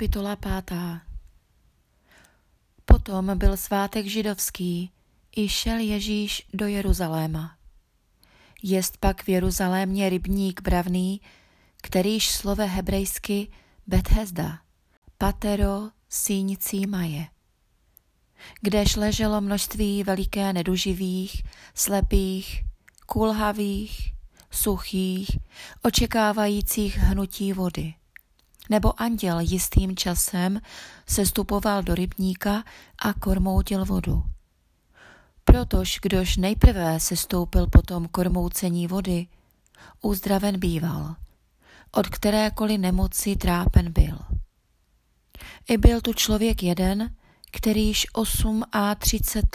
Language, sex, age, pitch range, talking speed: Czech, female, 20-39, 175-205 Hz, 85 wpm